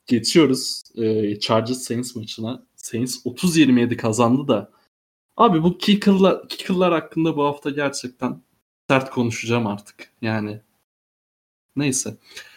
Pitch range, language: 120-145 Hz, Turkish